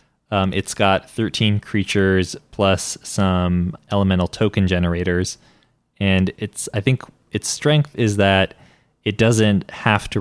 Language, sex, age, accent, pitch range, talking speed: English, male, 20-39, American, 95-105 Hz, 130 wpm